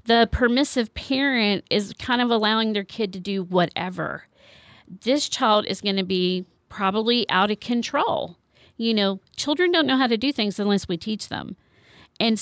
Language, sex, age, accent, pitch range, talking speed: English, female, 50-69, American, 205-260 Hz, 175 wpm